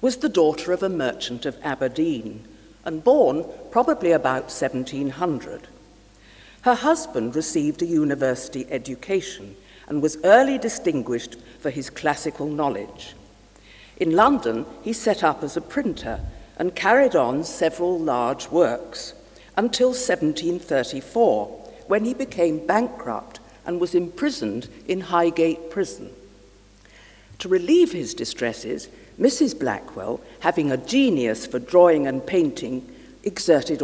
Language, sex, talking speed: English, female, 120 wpm